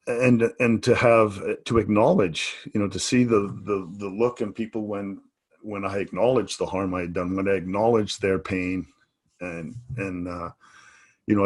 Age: 40-59